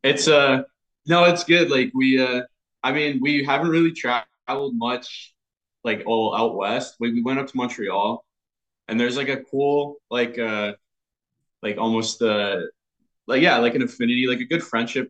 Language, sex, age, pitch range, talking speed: English, male, 20-39, 110-140 Hz, 180 wpm